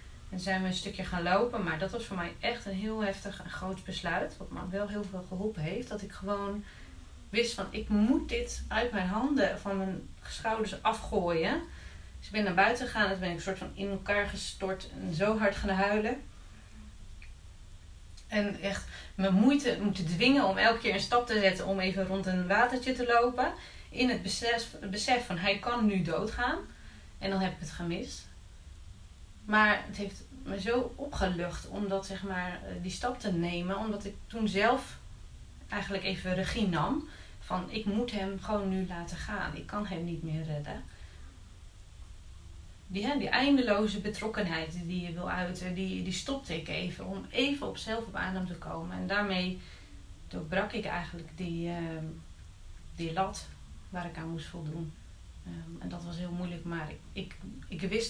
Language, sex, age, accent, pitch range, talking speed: Dutch, female, 30-49, Dutch, 165-210 Hz, 180 wpm